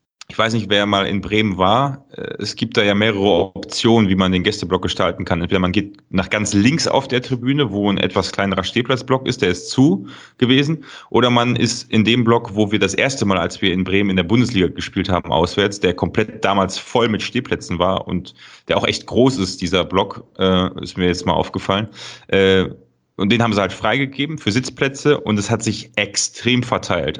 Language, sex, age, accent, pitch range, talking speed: German, male, 30-49, German, 95-115 Hz, 205 wpm